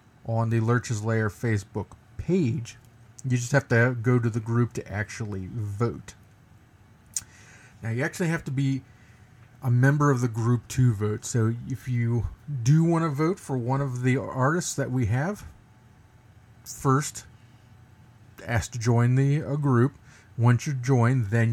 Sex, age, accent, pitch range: male, 40-59, American, 110-135 Hz